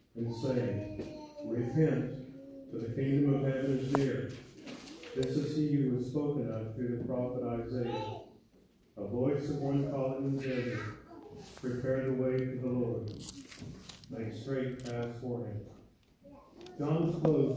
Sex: male